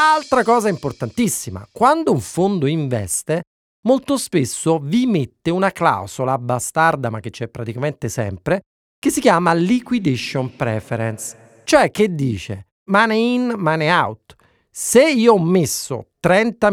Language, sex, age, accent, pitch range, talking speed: Italian, male, 40-59, native, 140-220 Hz, 130 wpm